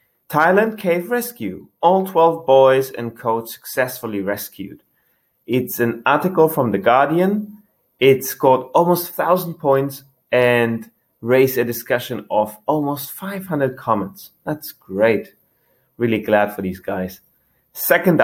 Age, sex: 30-49, male